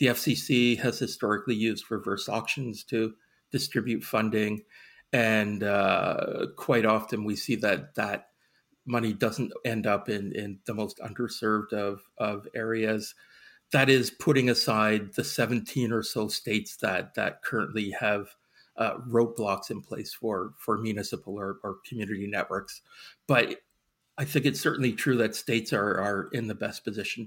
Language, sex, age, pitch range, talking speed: English, male, 40-59, 105-120 Hz, 150 wpm